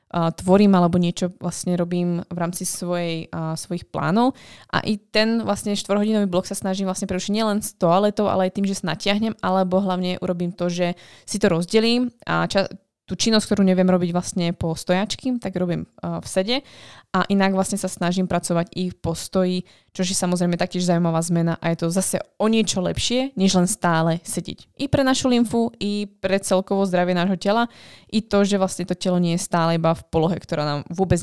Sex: female